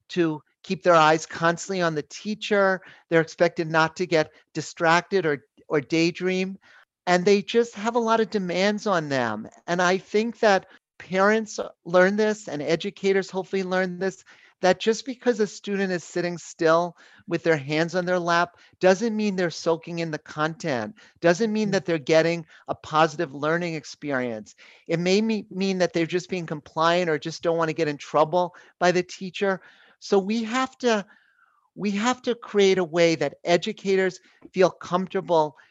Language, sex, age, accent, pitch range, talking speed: English, male, 40-59, American, 165-195 Hz, 170 wpm